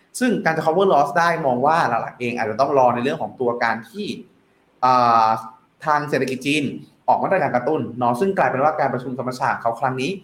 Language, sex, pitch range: Thai, male, 120-175 Hz